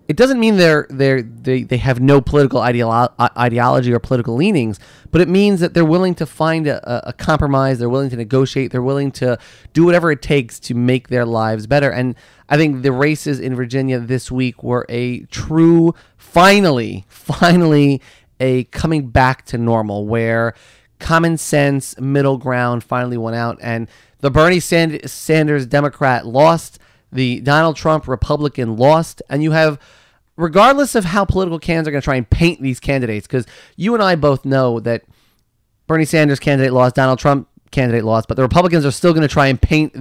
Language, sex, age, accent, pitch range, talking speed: English, male, 30-49, American, 120-155 Hz, 185 wpm